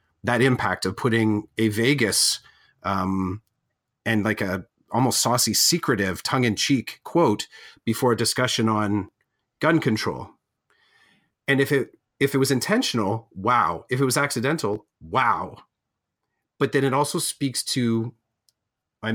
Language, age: English, 40-59